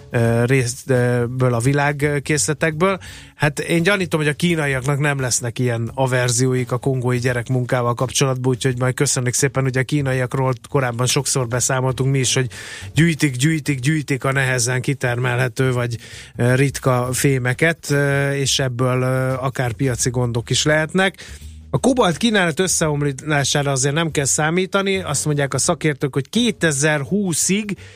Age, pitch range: 30-49, 125-150 Hz